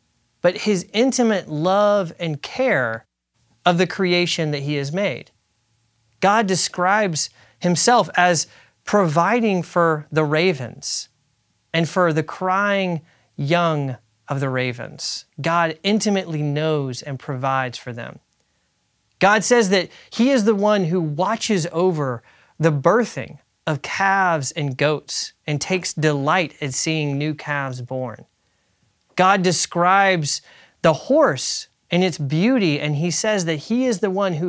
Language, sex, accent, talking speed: English, male, American, 130 wpm